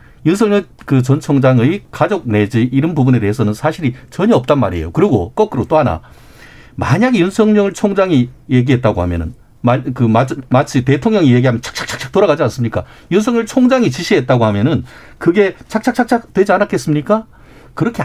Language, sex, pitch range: Korean, male, 115-160 Hz